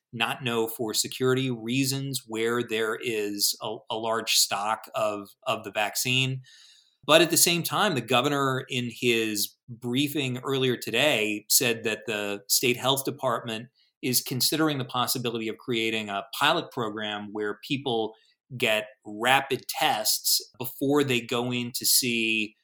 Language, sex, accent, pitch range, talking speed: English, male, American, 110-130 Hz, 145 wpm